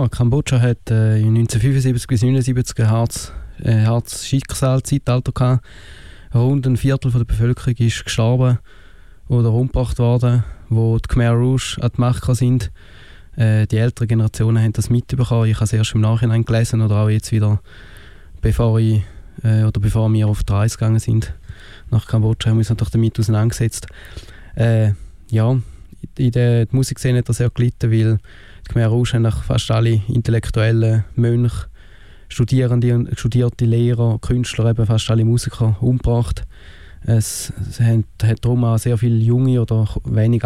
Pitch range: 110-120 Hz